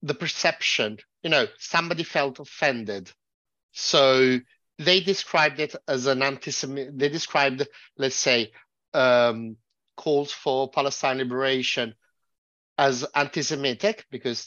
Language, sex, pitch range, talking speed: Italian, male, 130-165 Hz, 110 wpm